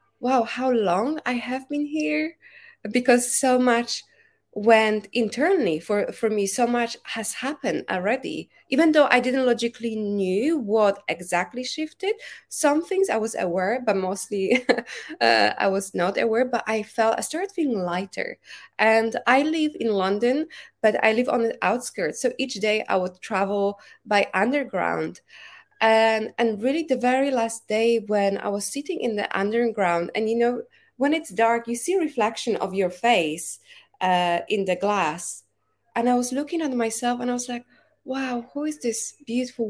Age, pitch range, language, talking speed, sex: 20-39, 200-260 Hz, English, 170 wpm, female